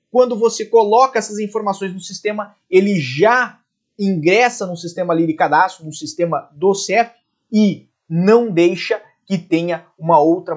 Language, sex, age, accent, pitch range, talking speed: Portuguese, male, 30-49, Brazilian, 150-220 Hz, 140 wpm